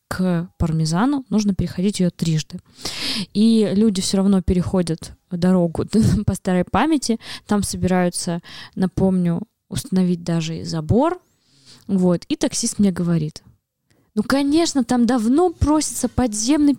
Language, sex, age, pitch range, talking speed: Russian, female, 20-39, 185-235 Hz, 115 wpm